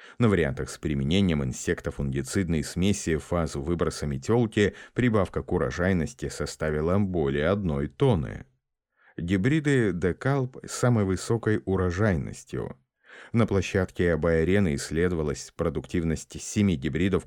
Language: Russian